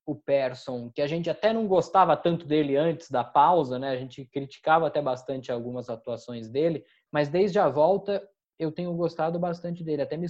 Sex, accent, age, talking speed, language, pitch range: male, Brazilian, 20-39, 190 wpm, Portuguese, 125-165 Hz